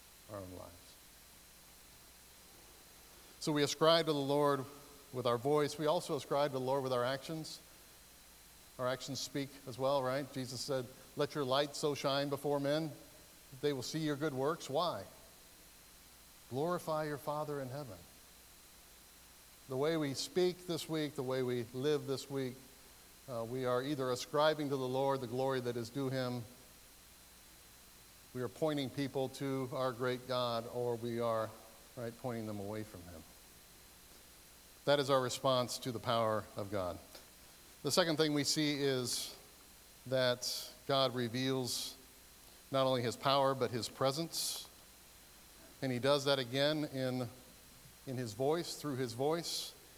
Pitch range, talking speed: 120-145 Hz, 155 wpm